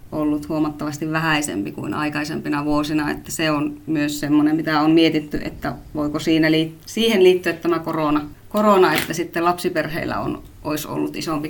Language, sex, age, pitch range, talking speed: Finnish, female, 30-49, 155-180 Hz, 155 wpm